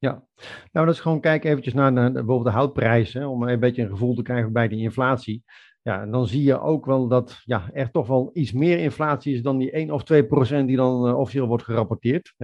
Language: Dutch